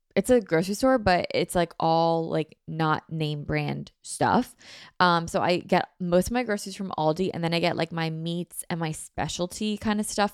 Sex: female